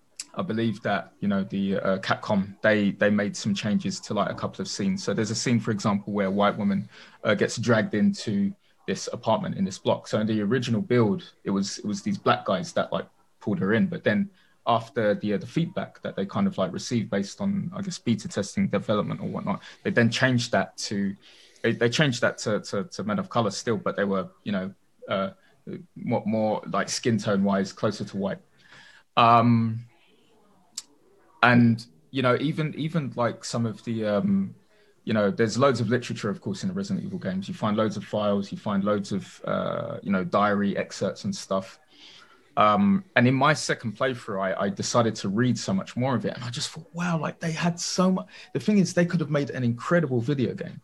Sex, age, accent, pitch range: male, 20-39, British, 105-160 Hz